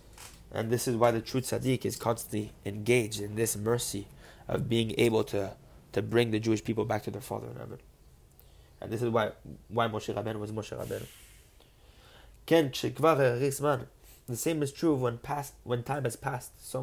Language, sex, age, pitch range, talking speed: English, male, 20-39, 115-140 Hz, 175 wpm